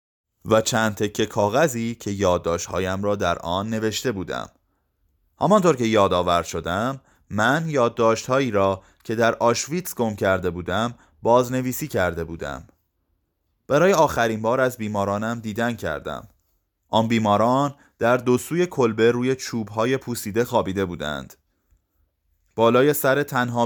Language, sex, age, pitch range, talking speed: Persian, male, 30-49, 90-125 Hz, 125 wpm